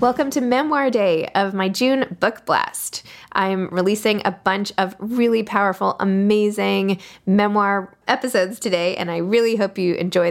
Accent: American